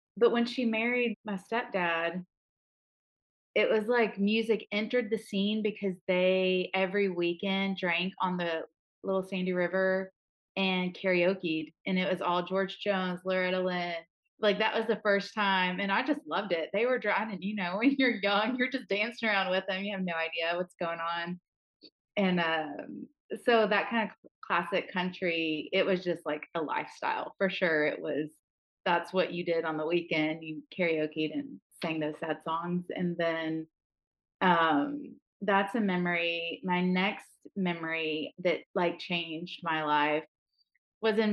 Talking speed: 165 wpm